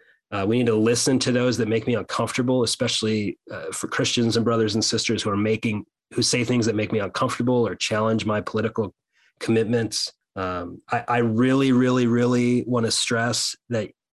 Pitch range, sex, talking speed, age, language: 110-120 Hz, male, 185 wpm, 30-49, English